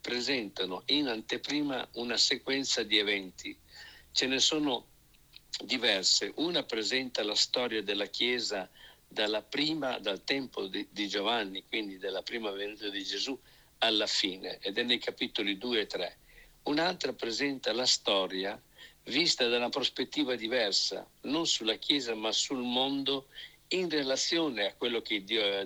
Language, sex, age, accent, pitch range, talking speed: Italian, male, 60-79, native, 105-140 Hz, 145 wpm